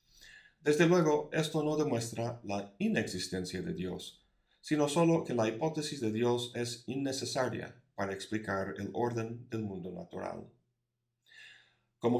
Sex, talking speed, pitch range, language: male, 130 wpm, 105-145 Hz, Spanish